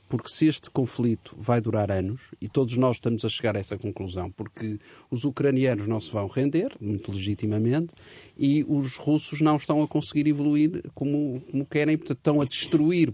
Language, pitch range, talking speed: Portuguese, 110-145 Hz, 185 wpm